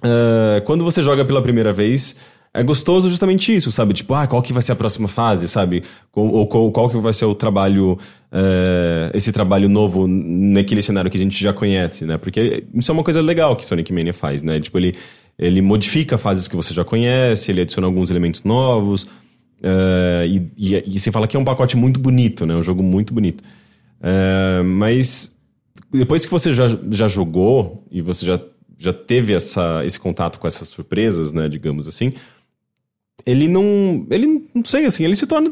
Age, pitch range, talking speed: 20-39, 95-130 Hz, 195 wpm